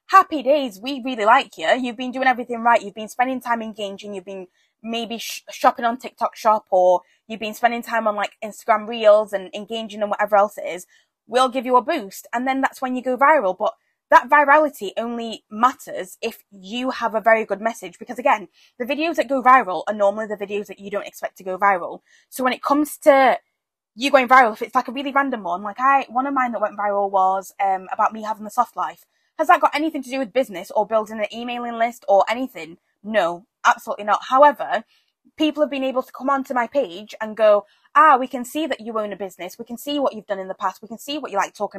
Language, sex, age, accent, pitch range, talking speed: English, female, 20-39, British, 215-275 Hz, 240 wpm